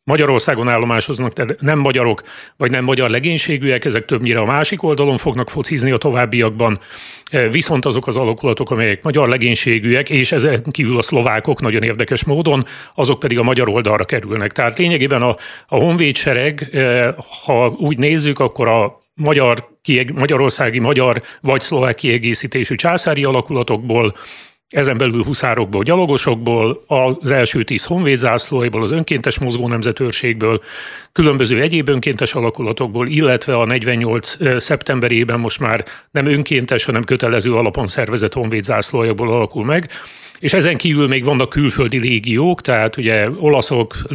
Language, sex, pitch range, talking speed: Hungarian, male, 115-140 Hz, 135 wpm